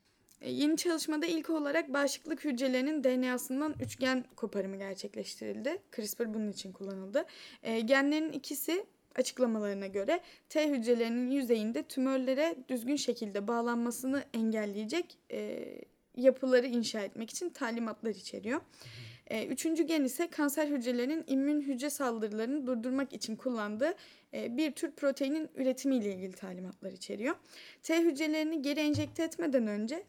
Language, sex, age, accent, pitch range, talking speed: Turkish, female, 10-29, native, 225-310 Hz, 110 wpm